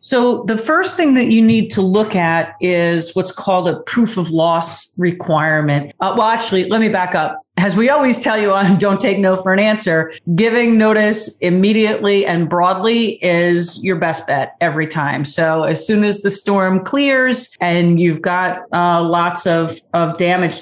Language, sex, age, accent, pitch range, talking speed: English, female, 40-59, American, 170-205 Hz, 185 wpm